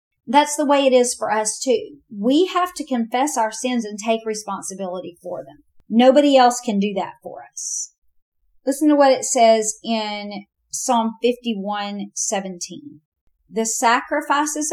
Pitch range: 180-235 Hz